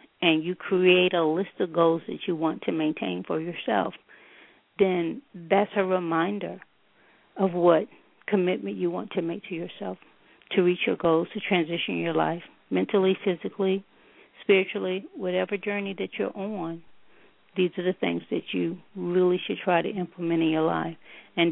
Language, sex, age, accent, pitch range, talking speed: English, female, 50-69, American, 165-195 Hz, 160 wpm